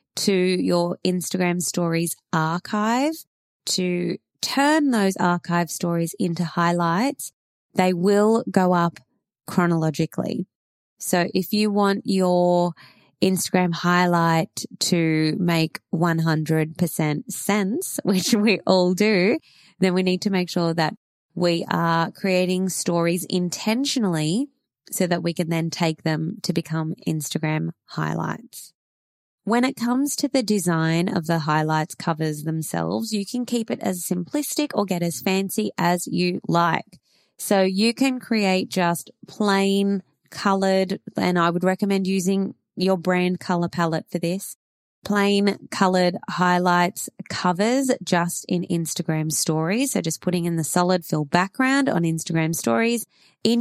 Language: English